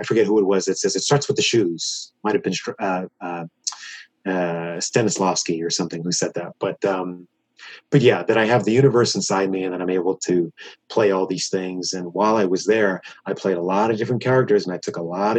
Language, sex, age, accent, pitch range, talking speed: English, male, 30-49, American, 95-130 Hz, 235 wpm